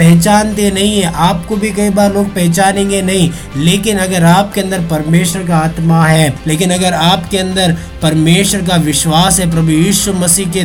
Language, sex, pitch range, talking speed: Hindi, male, 160-185 Hz, 170 wpm